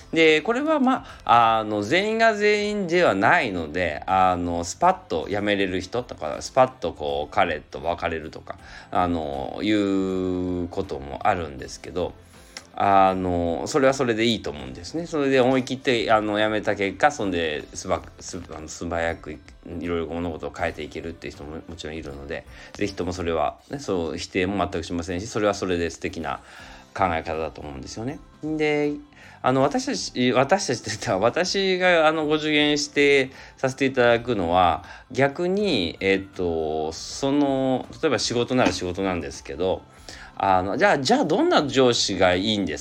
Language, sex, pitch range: Japanese, male, 85-140 Hz